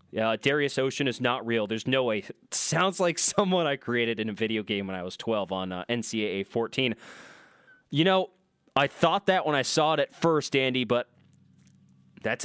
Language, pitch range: English, 120-170 Hz